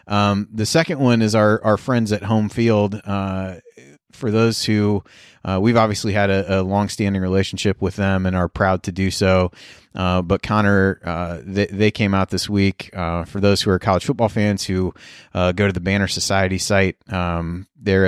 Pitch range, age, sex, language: 95-105 Hz, 30-49, male, English